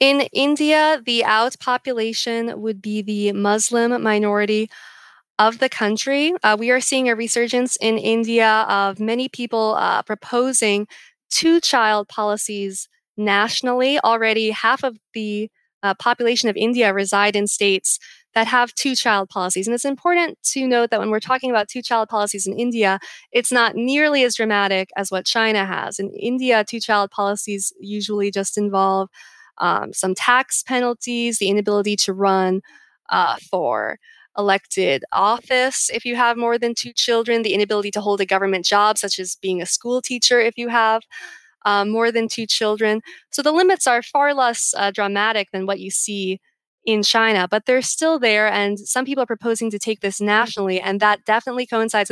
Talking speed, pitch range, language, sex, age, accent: 165 wpm, 205-240 Hz, English, female, 20-39, American